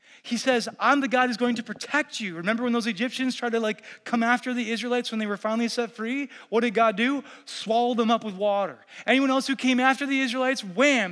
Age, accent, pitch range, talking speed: 20-39, American, 220-265 Hz, 235 wpm